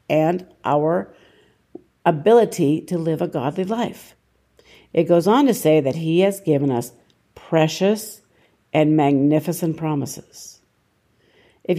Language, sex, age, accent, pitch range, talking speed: English, female, 50-69, American, 150-190 Hz, 115 wpm